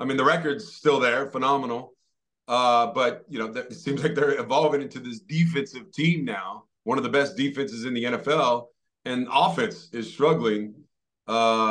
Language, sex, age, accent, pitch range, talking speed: English, male, 30-49, American, 125-160 Hz, 165 wpm